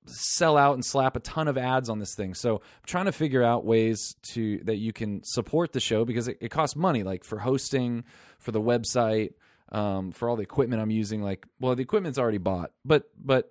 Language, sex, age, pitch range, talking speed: English, male, 20-39, 110-145 Hz, 225 wpm